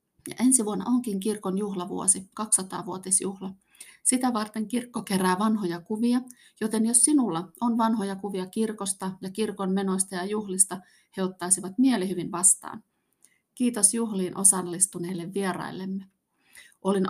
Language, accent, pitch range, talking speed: Finnish, native, 185-220 Hz, 125 wpm